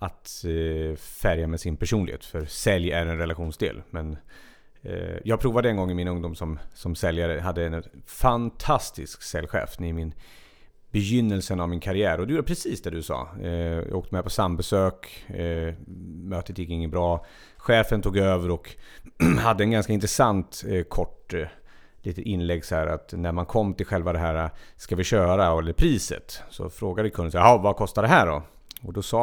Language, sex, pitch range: Swedish, male, 85-110 Hz